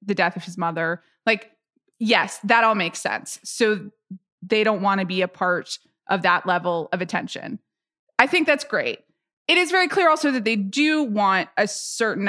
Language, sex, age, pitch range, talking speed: English, female, 20-39, 185-245 Hz, 190 wpm